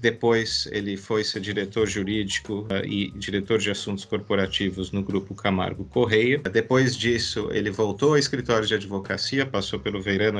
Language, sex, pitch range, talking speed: Portuguese, male, 100-125 Hz, 150 wpm